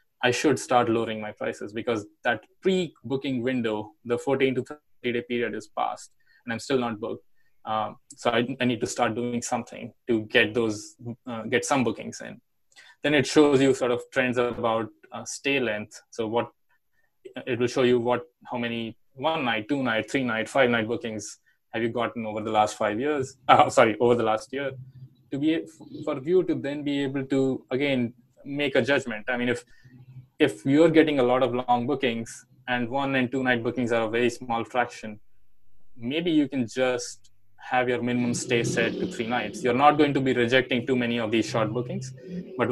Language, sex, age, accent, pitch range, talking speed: English, male, 20-39, Indian, 115-130 Hz, 200 wpm